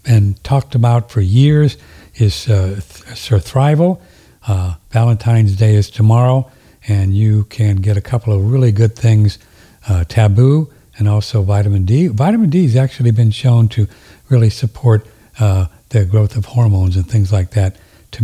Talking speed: 165 wpm